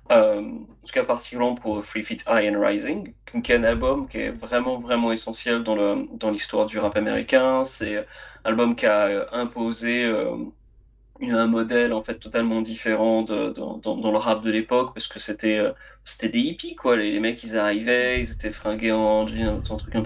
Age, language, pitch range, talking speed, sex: 20-39, French, 110-130 Hz, 210 wpm, male